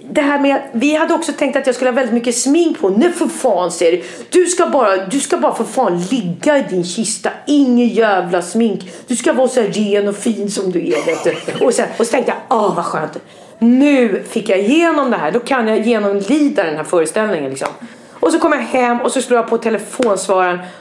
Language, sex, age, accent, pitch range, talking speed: English, female, 40-59, Swedish, 180-255 Hz, 240 wpm